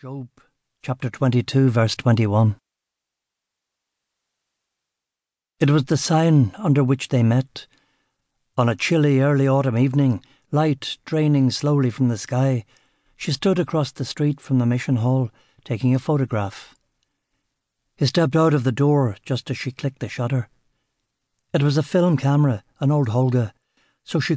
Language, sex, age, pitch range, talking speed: English, male, 60-79, 125-150 Hz, 145 wpm